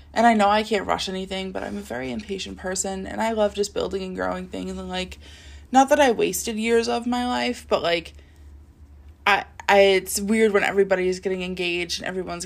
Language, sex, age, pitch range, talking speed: English, female, 20-39, 175-210 Hz, 205 wpm